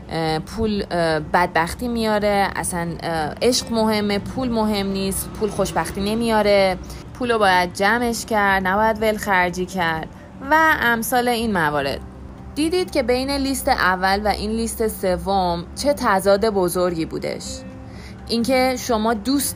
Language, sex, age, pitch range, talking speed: Persian, female, 30-49, 180-235 Hz, 125 wpm